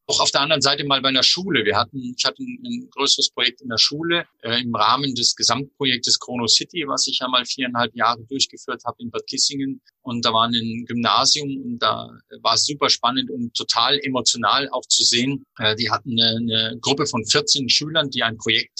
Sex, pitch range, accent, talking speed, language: male, 115-140 Hz, German, 210 wpm, German